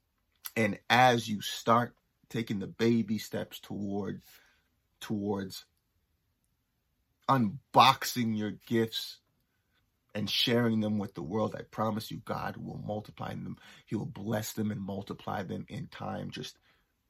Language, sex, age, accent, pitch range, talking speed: English, male, 30-49, American, 100-115 Hz, 125 wpm